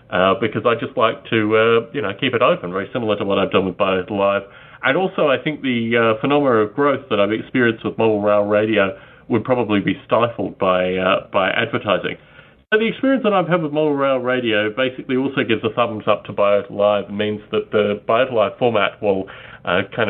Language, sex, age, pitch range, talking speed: English, male, 40-59, 105-135 Hz, 220 wpm